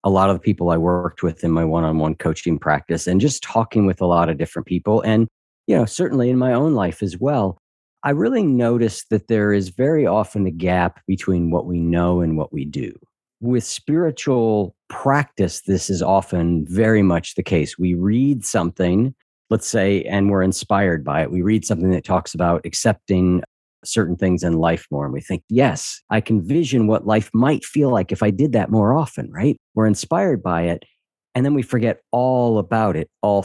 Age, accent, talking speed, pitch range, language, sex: 50-69, American, 205 wpm, 90-115 Hz, English, male